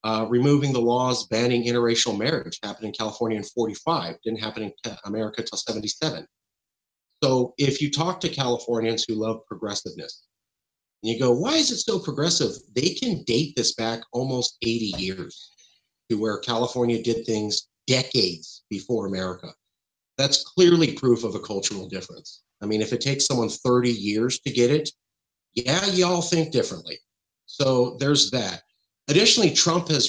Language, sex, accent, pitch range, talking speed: English, male, American, 110-145 Hz, 160 wpm